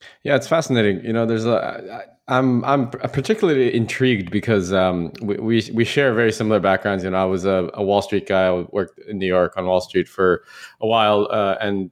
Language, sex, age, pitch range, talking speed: English, male, 20-39, 90-110 Hz, 215 wpm